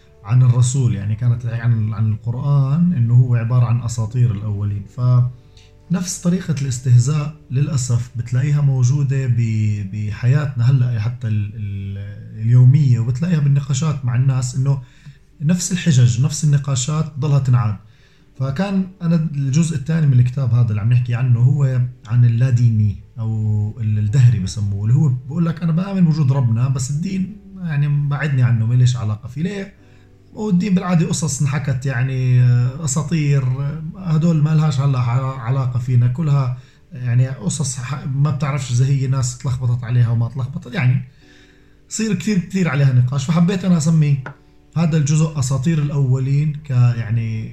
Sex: male